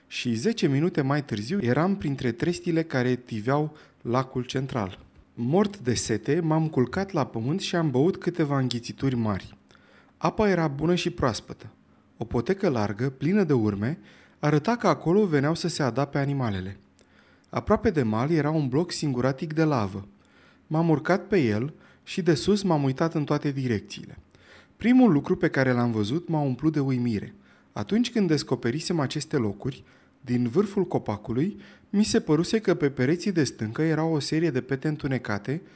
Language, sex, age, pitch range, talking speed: Romanian, male, 30-49, 125-175 Hz, 165 wpm